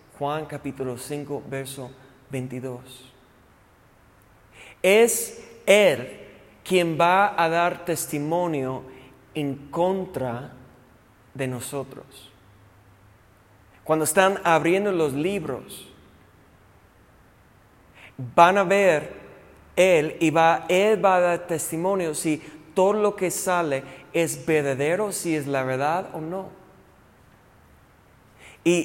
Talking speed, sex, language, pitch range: 95 wpm, male, Spanish, 135-185 Hz